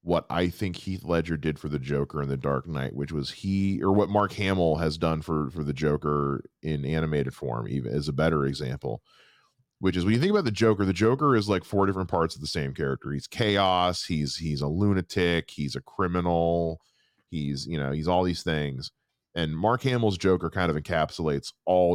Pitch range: 75-100 Hz